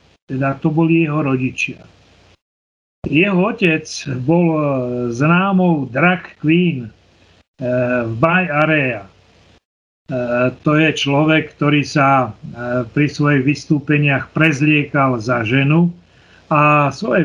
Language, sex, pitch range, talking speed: Slovak, male, 130-165 Hz, 105 wpm